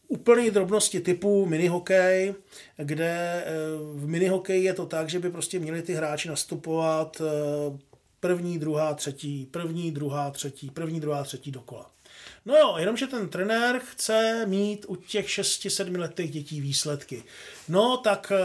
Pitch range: 150-185 Hz